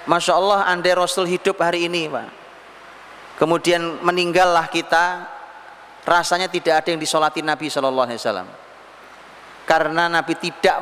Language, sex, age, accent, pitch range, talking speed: Indonesian, male, 30-49, native, 150-180 Hz, 115 wpm